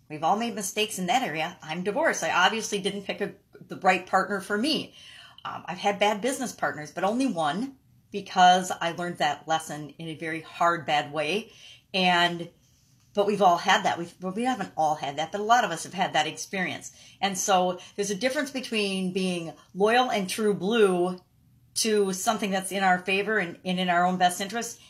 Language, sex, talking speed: English, female, 205 wpm